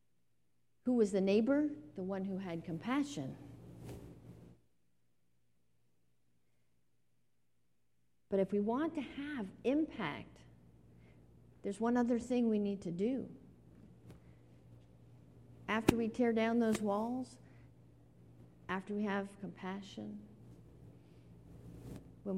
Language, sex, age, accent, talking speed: English, female, 50-69, American, 95 wpm